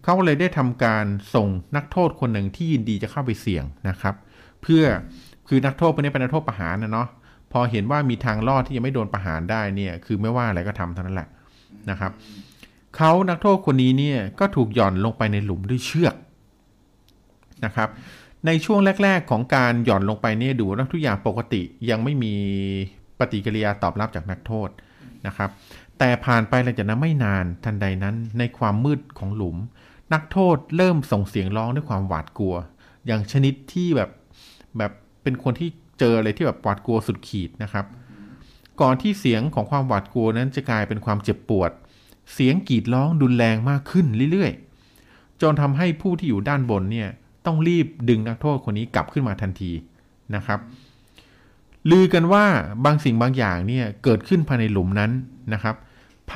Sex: male